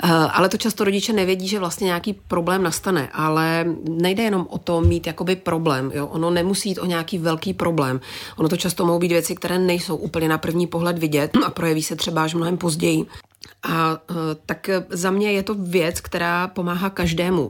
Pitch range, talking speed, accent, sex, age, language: 150-170 Hz, 190 wpm, native, female, 30-49, Czech